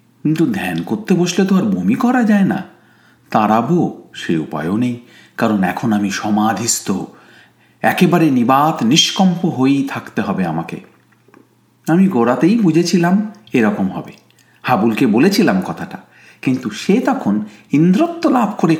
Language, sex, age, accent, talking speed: Bengali, male, 50-69, native, 110 wpm